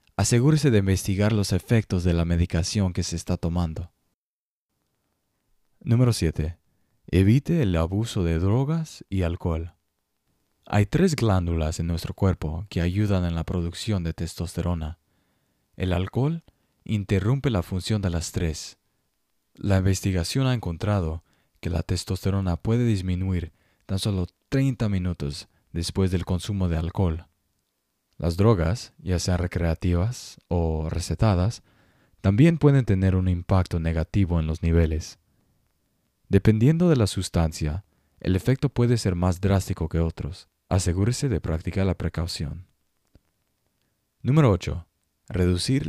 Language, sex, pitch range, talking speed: Spanish, male, 85-105 Hz, 125 wpm